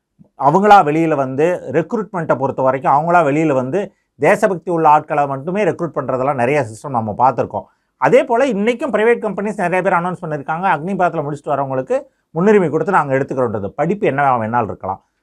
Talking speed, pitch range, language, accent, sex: 155 wpm, 130-180 Hz, Tamil, native, male